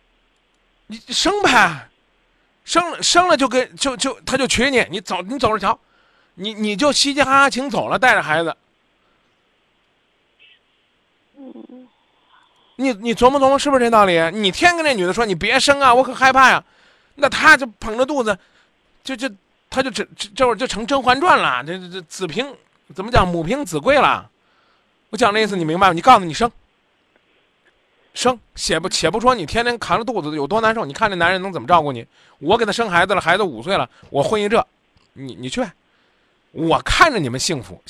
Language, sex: Chinese, male